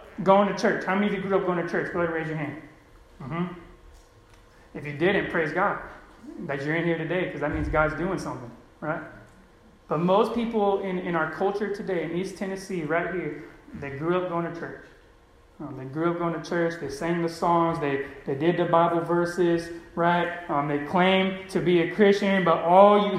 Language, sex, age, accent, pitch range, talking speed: English, male, 30-49, American, 170-230 Hz, 210 wpm